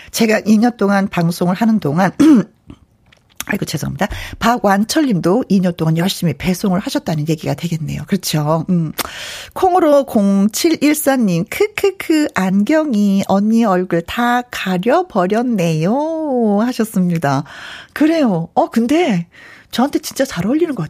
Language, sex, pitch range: Korean, female, 195-315 Hz